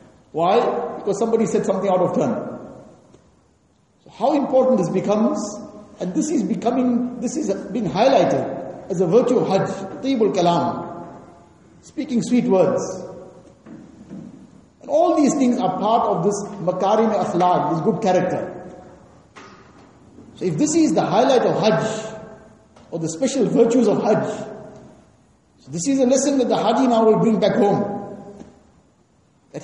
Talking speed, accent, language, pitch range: 145 wpm, Indian, English, 185-240 Hz